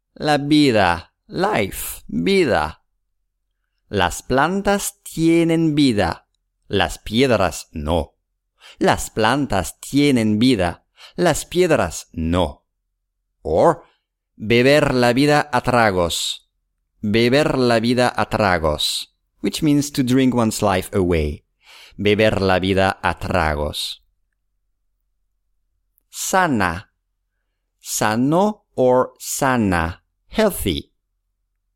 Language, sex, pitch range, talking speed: English, male, 85-135 Hz, 85 wpm